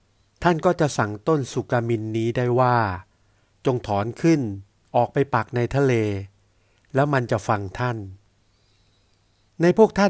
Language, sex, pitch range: Thai, male, 105-130 Hz